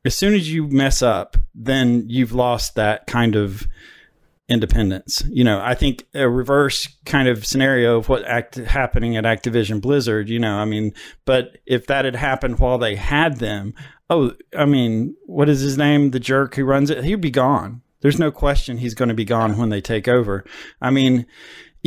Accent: American